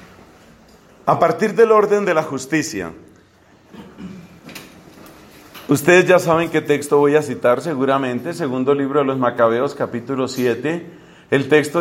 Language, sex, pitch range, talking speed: Spanish, male, 135-180 Hz, 125 wpm